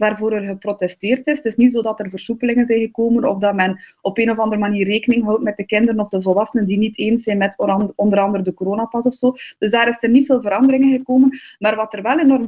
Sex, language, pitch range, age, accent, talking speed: female, Dutch, 210-260 Hz, 20-39, Dutch, 255 wpm